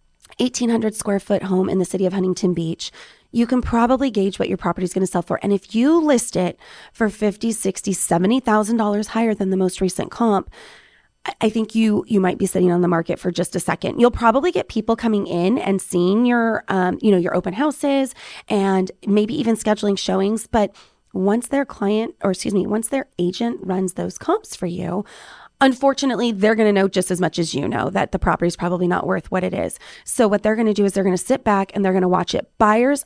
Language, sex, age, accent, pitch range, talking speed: English, female, 20-39, American, 185-230 Hz, 220 wpm